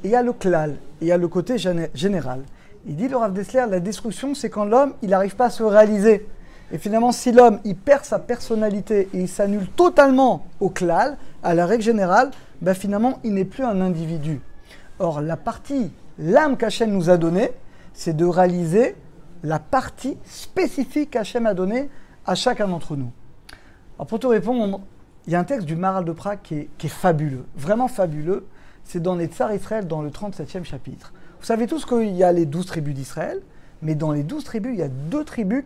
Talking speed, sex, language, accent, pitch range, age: 205 wpm, male, French, French, 165-230 Hz, 50-69